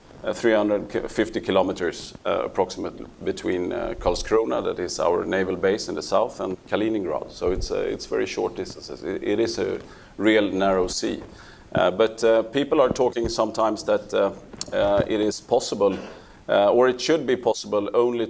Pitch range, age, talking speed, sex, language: 95-120 Hz, 30-49, 170 wpm, male, English